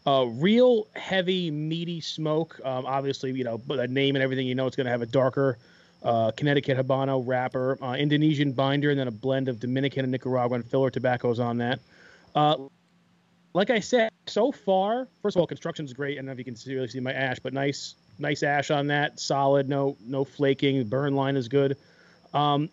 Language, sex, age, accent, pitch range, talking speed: English, male, 30-49, American, 135-160 Hz, 205 wpm